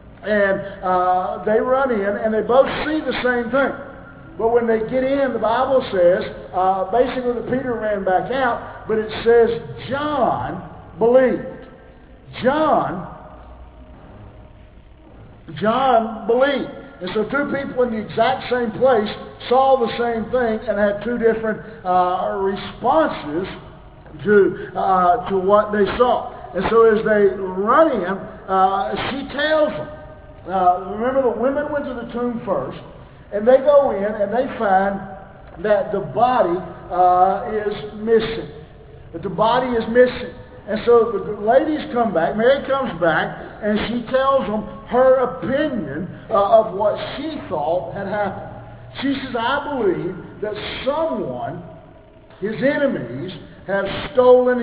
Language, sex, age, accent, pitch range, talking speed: English, male, 50-69, American, 195-255 Hz, 140 wpm